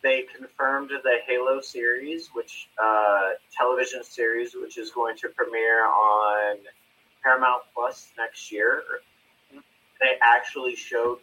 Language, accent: English, American